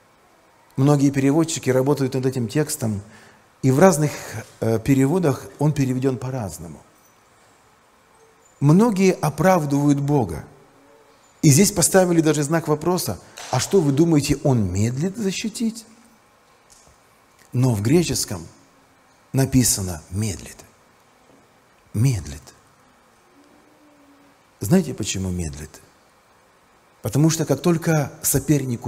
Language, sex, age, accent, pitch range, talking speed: Russian, male, 50-69, native, 125-190 Hz, 90 wpm